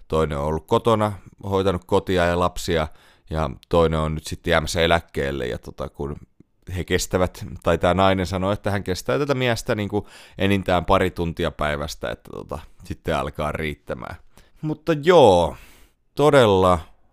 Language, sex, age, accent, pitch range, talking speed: Finnish, male, 30-49, native, 80-110 Hz, 145 wpm